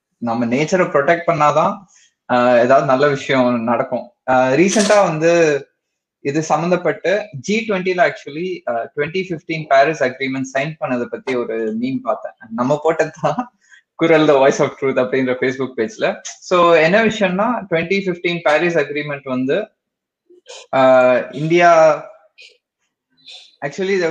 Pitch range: 135-195 Hz